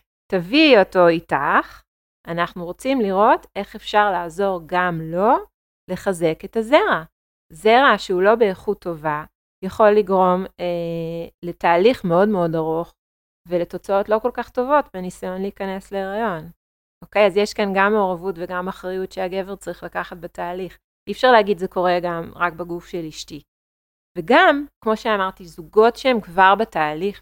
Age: 30-49